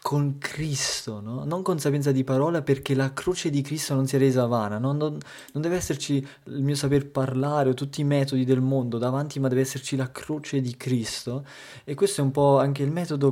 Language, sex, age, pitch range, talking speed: Italian, male, 20-39, 125-140 Hz, 210 wpm